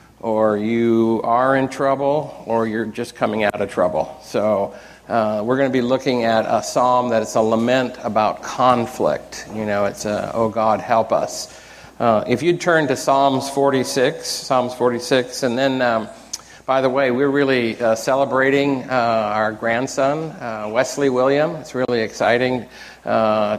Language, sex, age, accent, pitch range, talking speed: English, male, 50-69, American, 110-130 Hz, 165 wpm